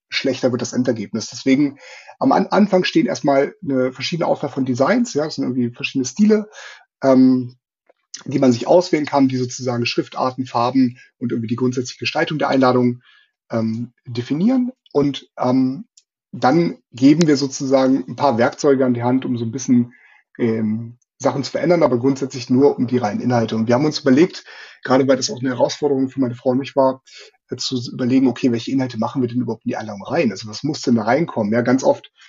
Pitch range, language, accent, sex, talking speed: 125-140 Hz, German, German, male, 200 wpm